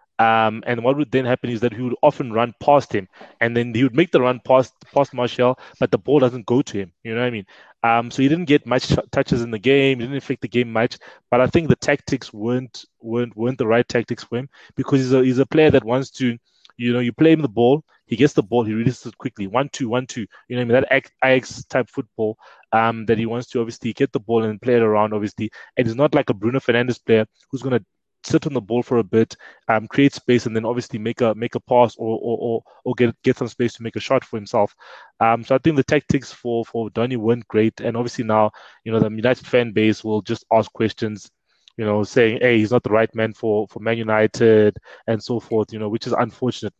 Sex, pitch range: male, 115-130 Hz